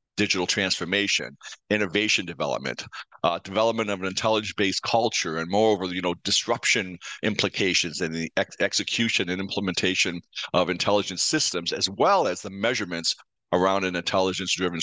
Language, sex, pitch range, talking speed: English, male, 90-110 Hz, 135 wpm